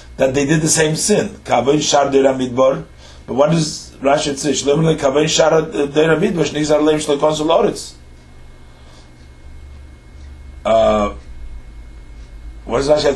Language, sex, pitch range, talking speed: English, male, 110-135 Hz, 80 wpm